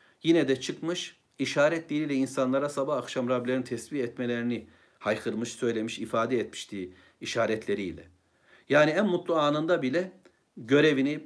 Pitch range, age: 125-160 Hz, 60-79